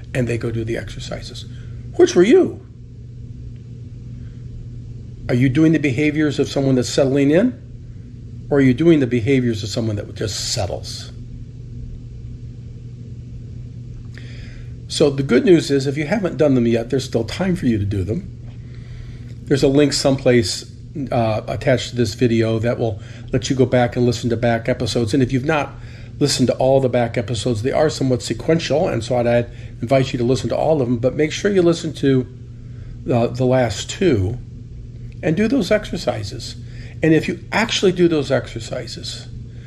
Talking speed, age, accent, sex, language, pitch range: 175 wpm, 40-59, American, male, English, 120-135 Hz